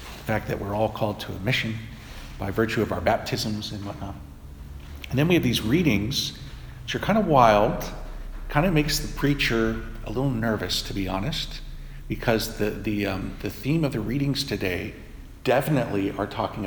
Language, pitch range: English, 100-130 Hz